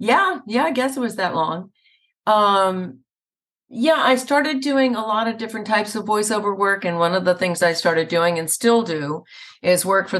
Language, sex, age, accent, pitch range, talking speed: English, female, 50-69, American, 165-205 Hz, 205 wpm